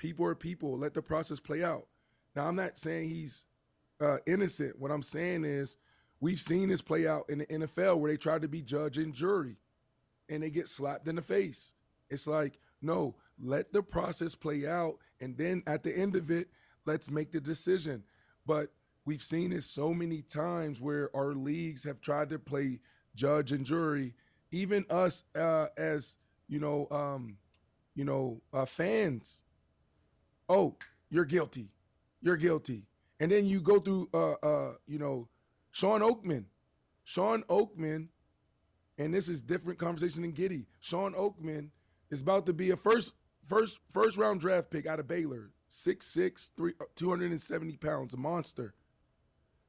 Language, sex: English, male